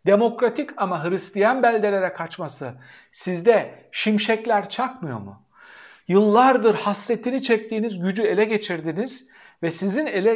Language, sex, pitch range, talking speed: Turkish, male, 165-235 Hz, 105 wpm